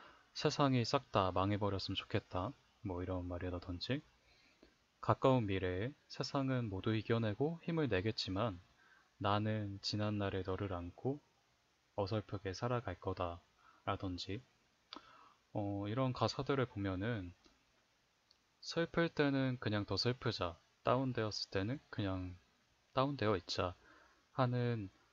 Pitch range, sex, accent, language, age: 95-125 Hz, male, native, Korean, 20-39